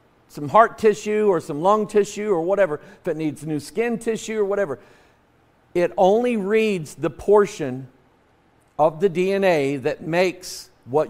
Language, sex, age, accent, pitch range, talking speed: English, male, 50-69, American, 145-200 Hz, 150 wpm